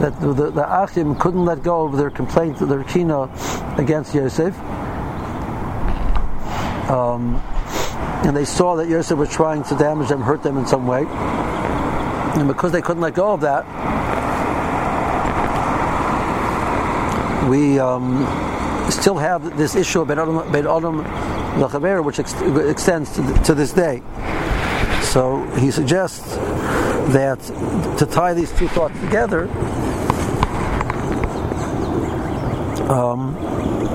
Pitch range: 125-160 Hz